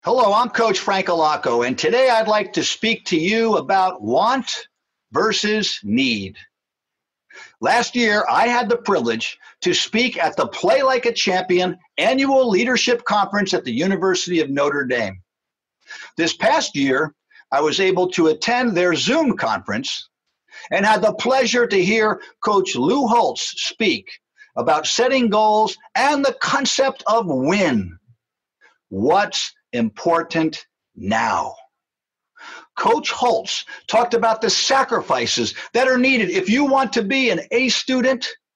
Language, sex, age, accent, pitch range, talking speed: English, male, 60-79, American, 185-260 Hz, 140 wpm